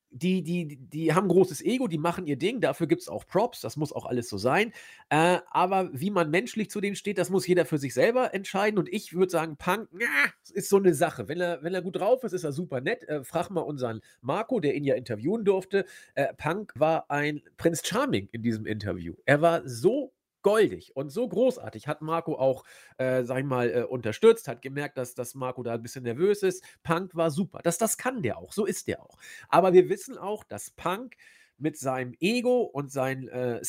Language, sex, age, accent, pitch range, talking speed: German, male, 40-59, German, 140-195 Hz, 225 wpm